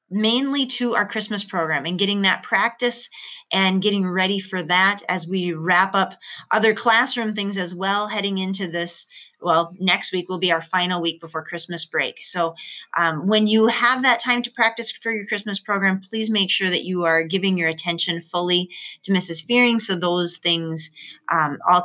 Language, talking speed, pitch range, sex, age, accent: English, 185 wpm, 175-235 Hz, female, 30-49, American